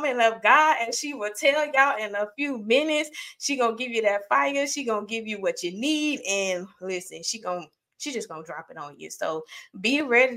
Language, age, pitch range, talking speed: English, 20-39, 185-245 Hz, 220 wpm